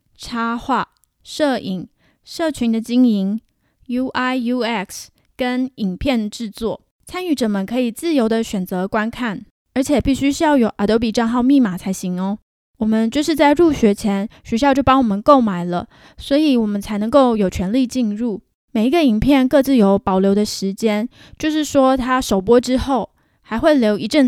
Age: 10-29